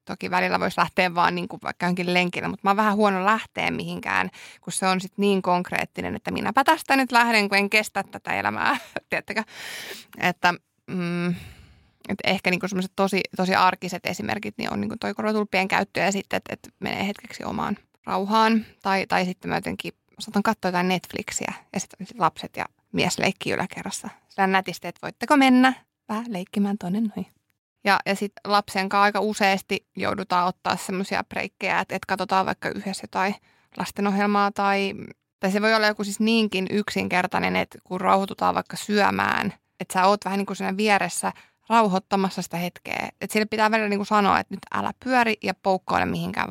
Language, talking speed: Finnish, 175 wpm